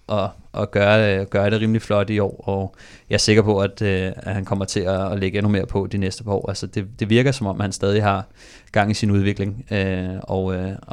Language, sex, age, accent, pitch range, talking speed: Danish, male, 20-39, native, 100-110 Hz, 265 wpm